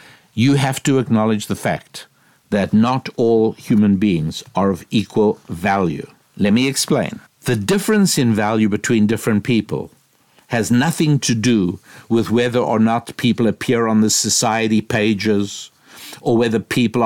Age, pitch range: 60-79, 105-125 Hz